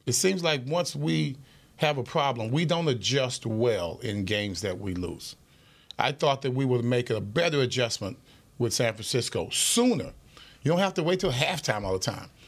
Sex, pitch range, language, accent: male, 130-200 Hz, English, American